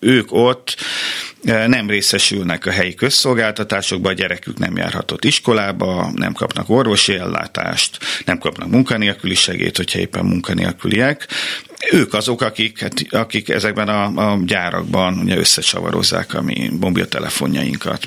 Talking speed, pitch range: 125 wpm, 95-125 Hz